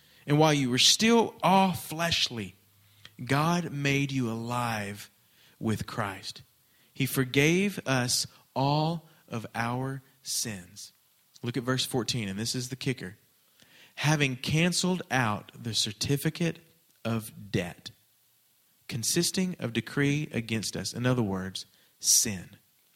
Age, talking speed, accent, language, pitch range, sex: 40-59, 120 wpm, American, English, 110-155 Hz, male